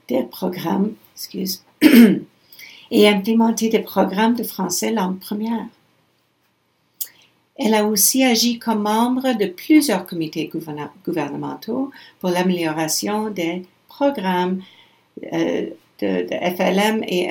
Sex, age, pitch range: female, 60-79, 175-215 Hz